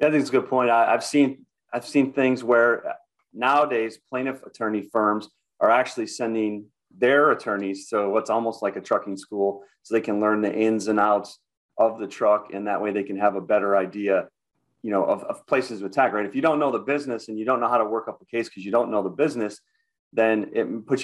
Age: 30-49